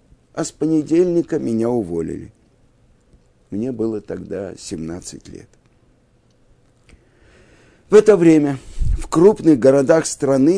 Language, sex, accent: Russian, male, native